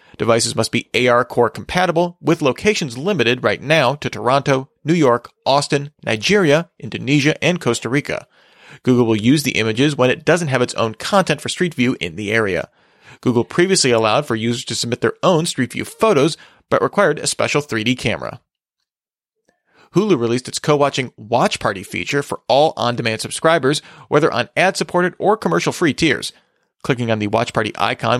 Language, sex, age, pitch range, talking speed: English, male, 30-49, 115-155 Hz, 170 wpm